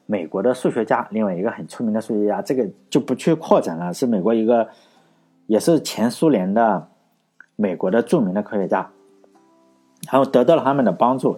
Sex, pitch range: male, 90-150 Hz